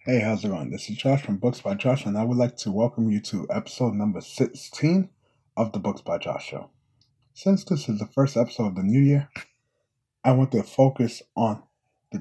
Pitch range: 120-145 Hz